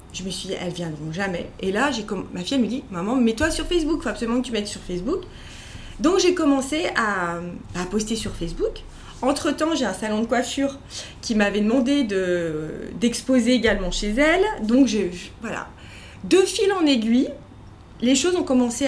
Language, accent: French, French